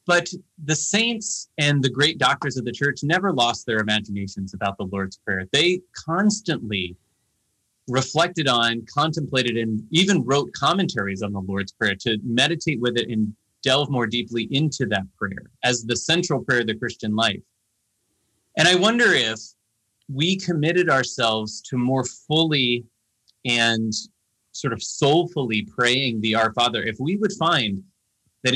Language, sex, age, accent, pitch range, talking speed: English, male, 30-49, American, 110-150 Hz, 155 wpm